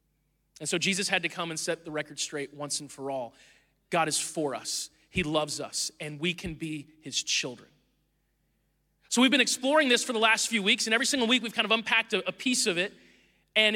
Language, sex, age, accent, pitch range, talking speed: English, male, 30-49, American, 180-240 Hz, 225 wpm